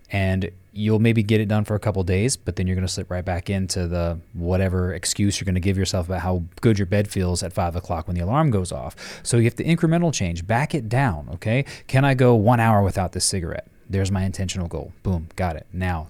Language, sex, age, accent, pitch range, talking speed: English, male, 30-49, American, 90-115 Hz, 255 wpm